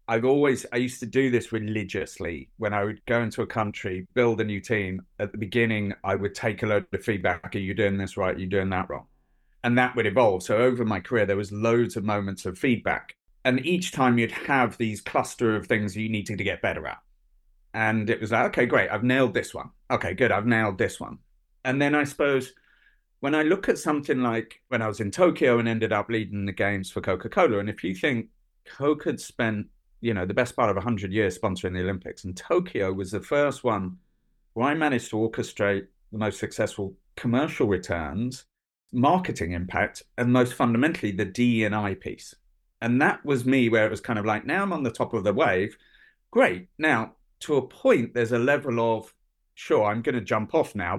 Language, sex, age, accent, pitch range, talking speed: English, male, 30-49, British, 100-120 Hz, 220 wpm